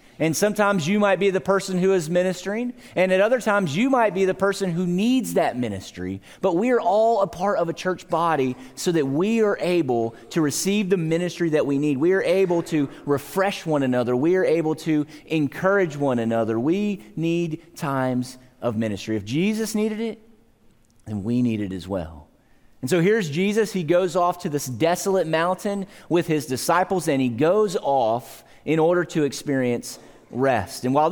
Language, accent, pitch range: English, American, 135-195 Hz